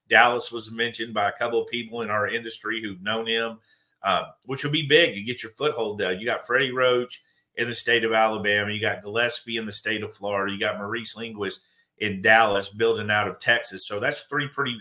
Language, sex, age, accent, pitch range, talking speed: English, male, 50-69, American, 105-125 Hz, 225 wpm